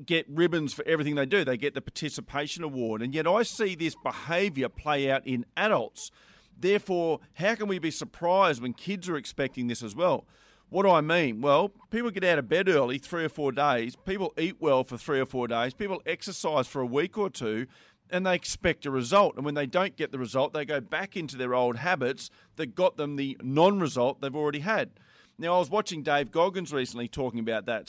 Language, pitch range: English, 130-175 Hz